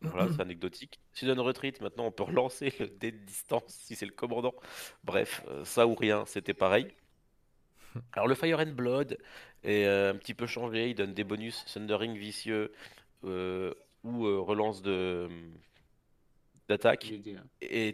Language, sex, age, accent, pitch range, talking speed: French, male, 30-49, French, 95-115 Hz, 155 wpm